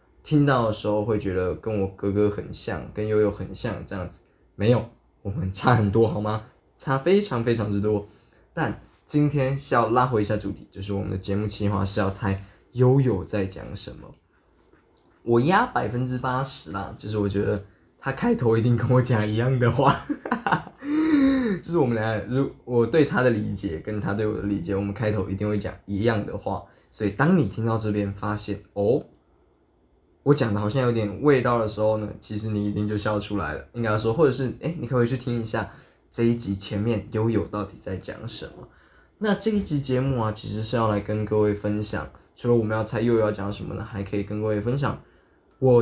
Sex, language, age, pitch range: male, Chinese, 20-39, 100-125 Hz